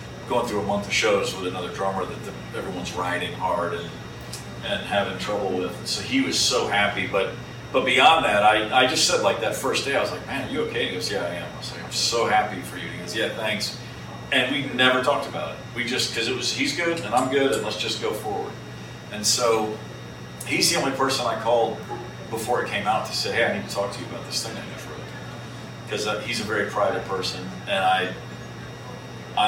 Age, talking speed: 40-59, 245 wpm